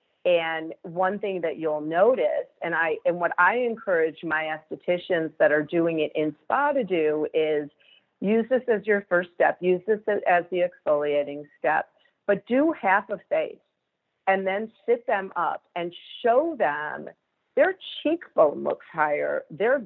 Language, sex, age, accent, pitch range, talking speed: English, female, 40-59, American, 160-200 Hz, 160 wpm